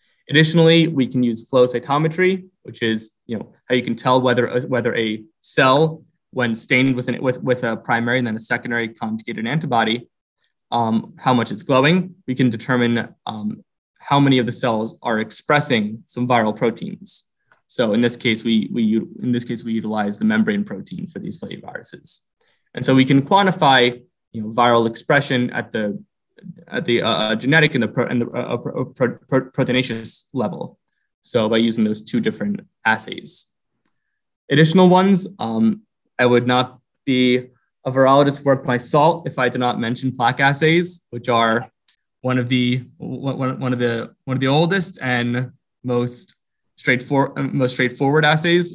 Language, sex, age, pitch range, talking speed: English, male, 20-39, 120-155 Hz, 175 wpm